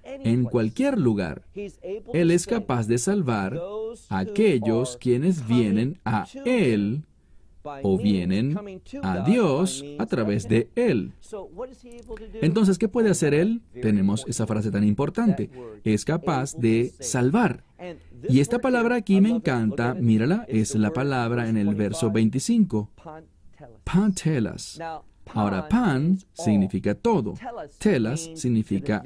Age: 40-59